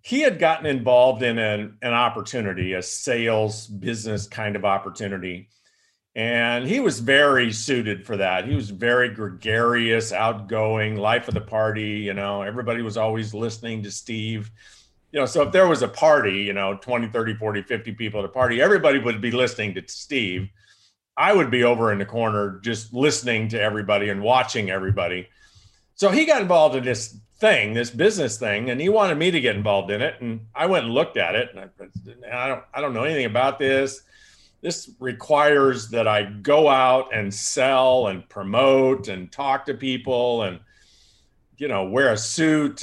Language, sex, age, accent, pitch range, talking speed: English, male, 50-69, American, 105-140 Hz, 185 wpm